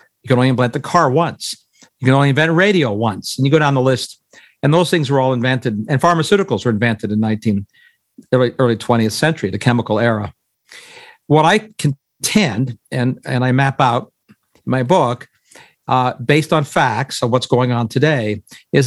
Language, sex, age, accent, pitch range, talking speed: English, male, 50-69, American, 120-155 Hz, 190 wpm